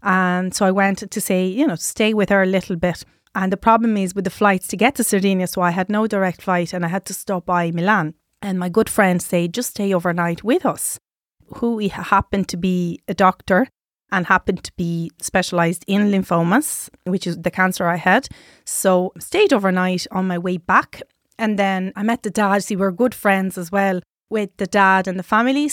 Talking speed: 215 wpm